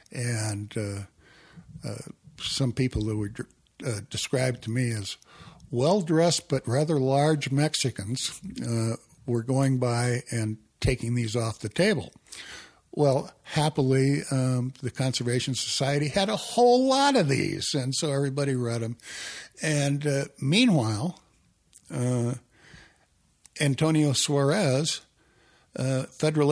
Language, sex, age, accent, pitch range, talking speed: English, male, 60-79, American, 110-140 Hz, 120 wpm